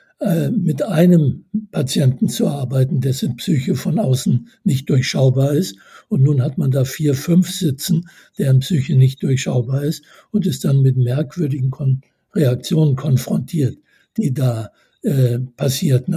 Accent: German